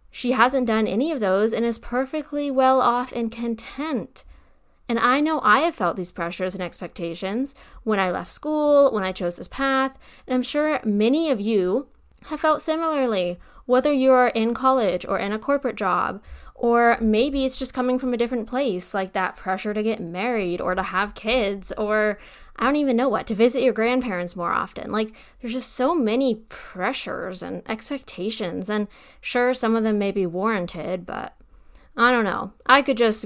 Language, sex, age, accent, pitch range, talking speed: English, female, 10-29, American, 195-255 Hz, 190 wpm